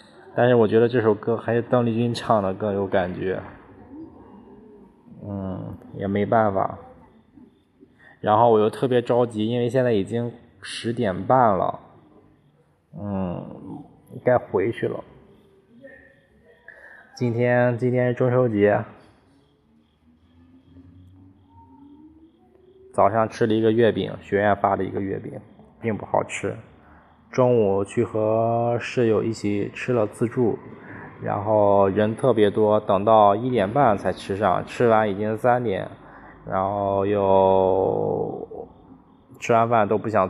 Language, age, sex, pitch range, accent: Chinese, 20-39, male, 100-120 Hz, native